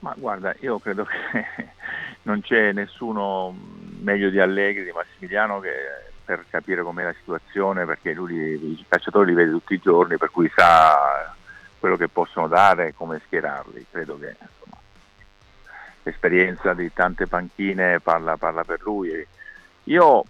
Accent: native